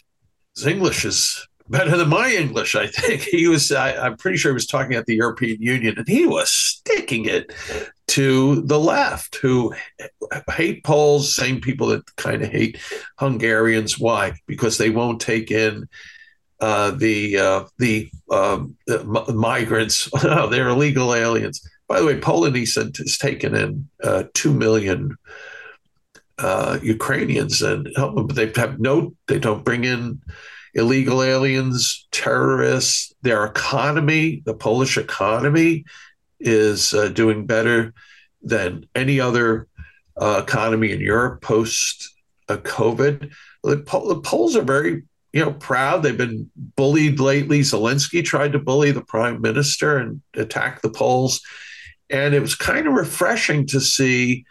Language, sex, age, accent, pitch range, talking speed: English, male, 60-79, American, 115-145 Hz, 145 wpm